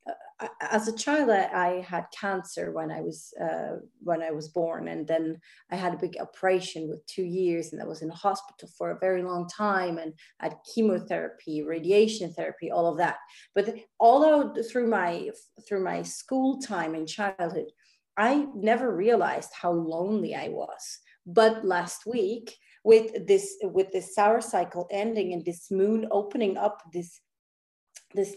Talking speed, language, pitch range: 165 wpm, English, 180-230 Hz